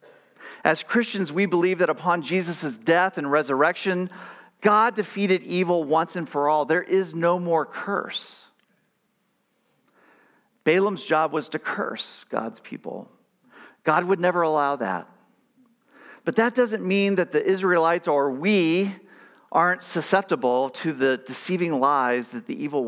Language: English